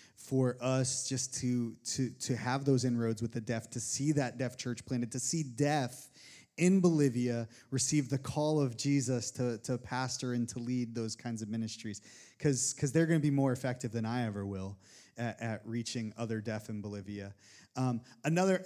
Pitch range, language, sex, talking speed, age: 120-140 Hz, English, male, 185 wpm, 20-39